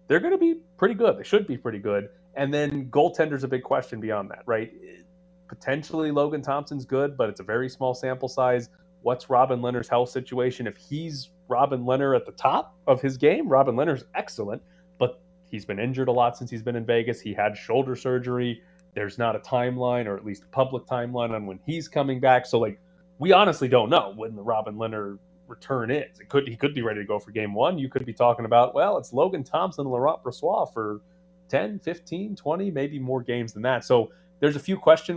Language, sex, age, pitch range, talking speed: English, male, 30-49, 120-165 Hz, 215 wpm